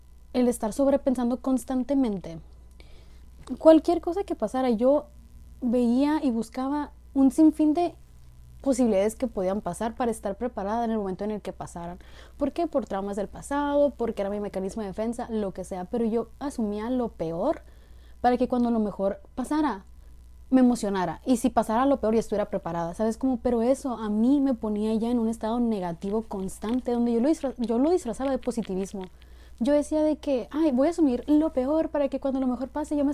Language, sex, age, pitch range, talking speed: Spanish, female, 20-39, 210-270 Hz, 190 wpm